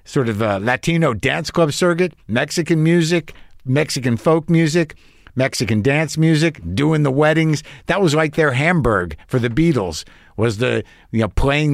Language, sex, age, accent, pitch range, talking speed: English, male, 50-69, American, 115-155 Hz, 160 wpm